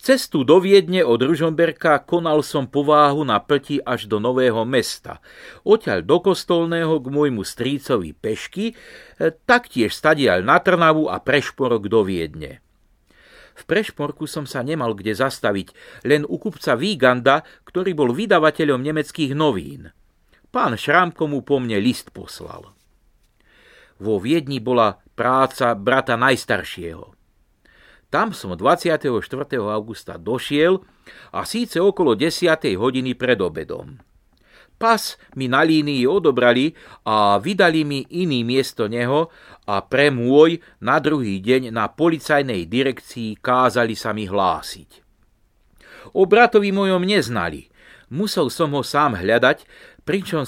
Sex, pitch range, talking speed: male, 125-165 Hz, 125 wpm